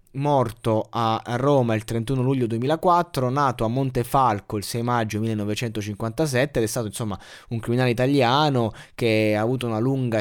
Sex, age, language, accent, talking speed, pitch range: male, 20-39, Italian, native, 155 wpm, 110-140 Hz